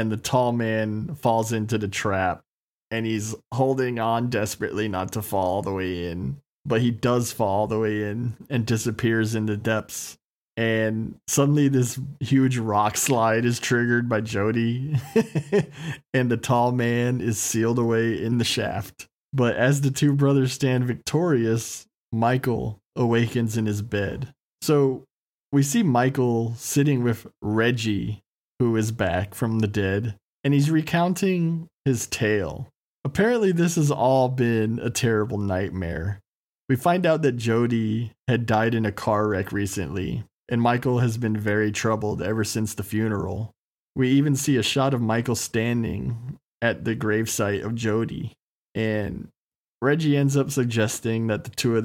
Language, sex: English, male